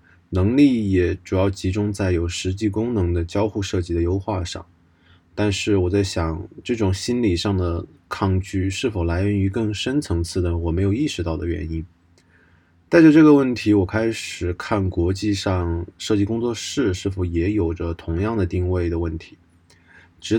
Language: Chinese